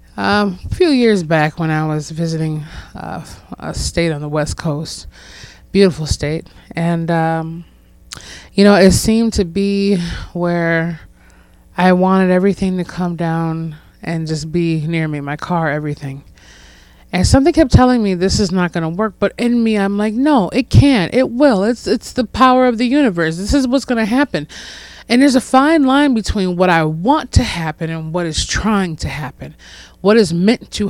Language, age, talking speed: English, 20-39, 185 wpm